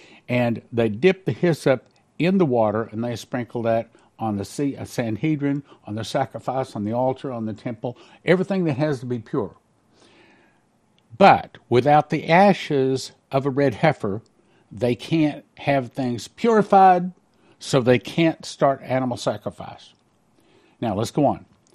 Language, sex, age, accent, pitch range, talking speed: English, male, 60-79, American, 120-150 Hz, 150 wpm